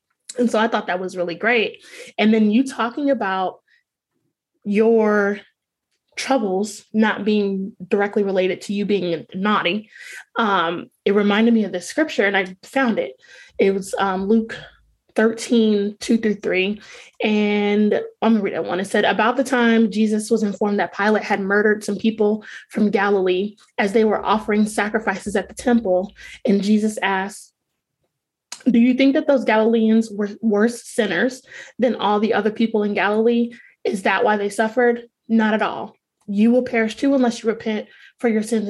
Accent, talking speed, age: American, 165 wpm, 20-39